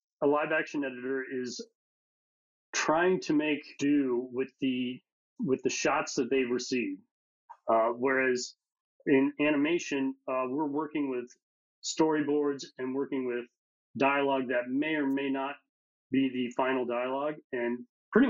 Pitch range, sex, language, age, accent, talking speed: 125-150 Hz, male, English, 30-49, American, 135 wpm